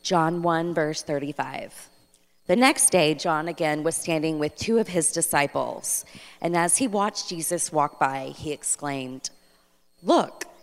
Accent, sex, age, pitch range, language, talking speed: American, female, 30-49, 135-175 Hz, English, 145 wpm